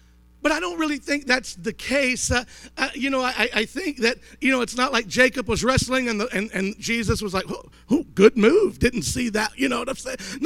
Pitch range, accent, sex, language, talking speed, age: 200-255 Hz, American, male, English, 245 wpm, 50-69